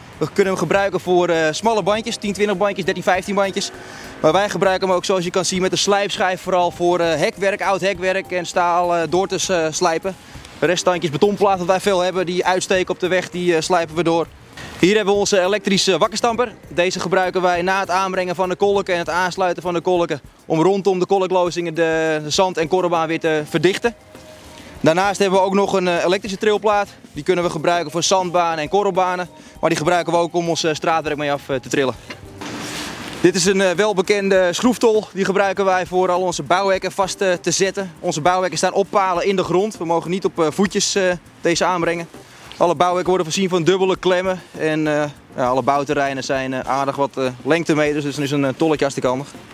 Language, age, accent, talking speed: Dutch, 20-39, Dutch, 195 wpm